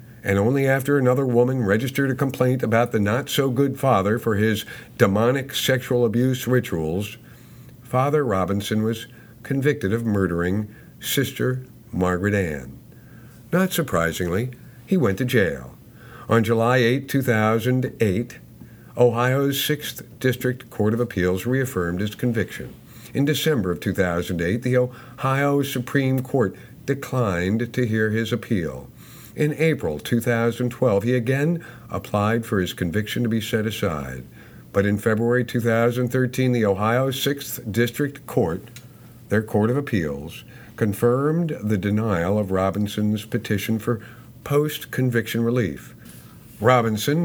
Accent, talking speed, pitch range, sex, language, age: American, 120 wpm, 105-130 Hz, male, English, 50-69